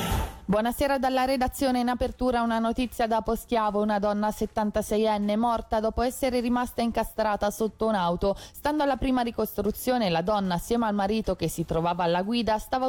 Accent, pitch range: native, 190-250 Hz